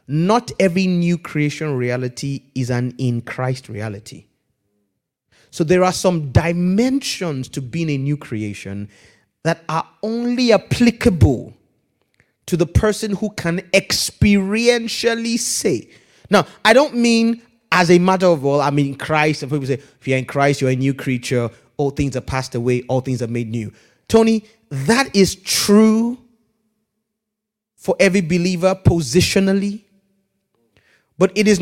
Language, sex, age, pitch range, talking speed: English, male, 30-49, 135-220 Hz, 145 wpm